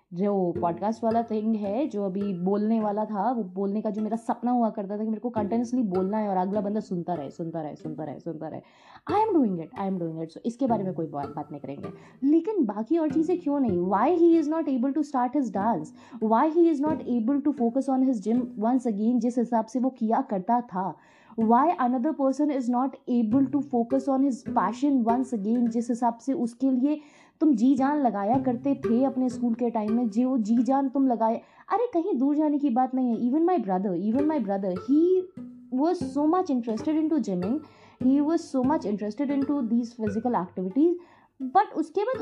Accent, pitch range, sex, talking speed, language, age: native, 215-285 Hz, female, 220 wpm, Hindi, 20-39